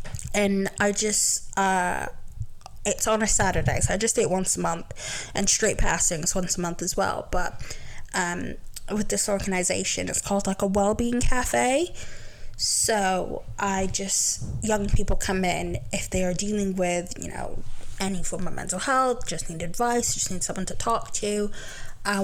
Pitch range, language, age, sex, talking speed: 180-210 Hz, English, 20-39, female, 170 wpm